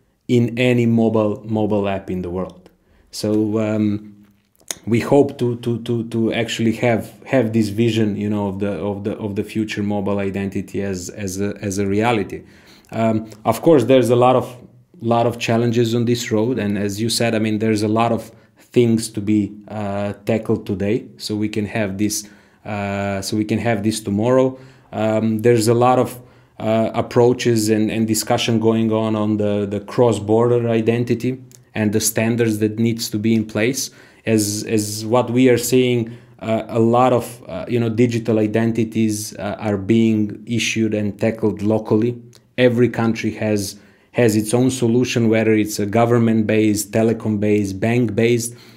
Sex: male